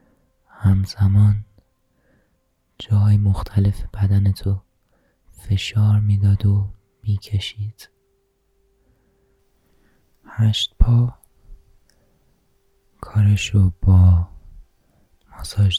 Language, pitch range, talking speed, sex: Persian, 90-110 Hz, 50 wpm, male